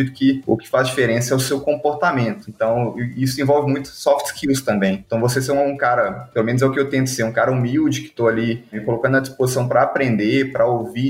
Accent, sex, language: Brazilian, male, Portuguese